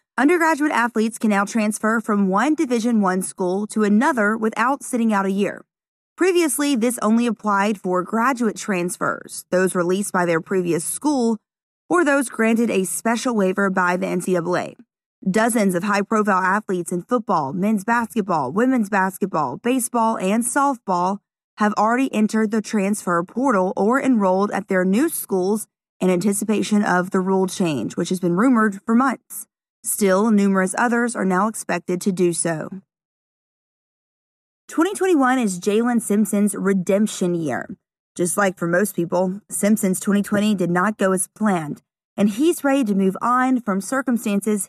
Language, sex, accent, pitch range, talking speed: English, female, American, 185-235 Hz, 150 wpm